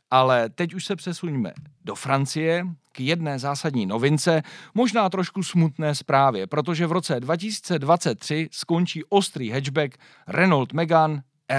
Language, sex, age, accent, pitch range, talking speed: Czech, male, 40-59, native, 135-175 Hz, 125 wpm